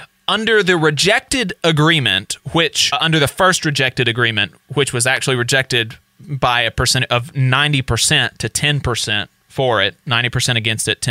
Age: 30-49